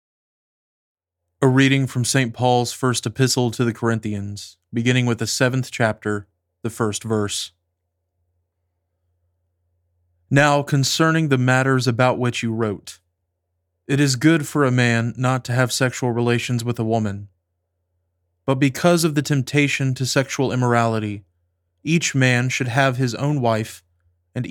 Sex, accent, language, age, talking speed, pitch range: male, American, English, 30-49, 135 wpm, 90-130 Hz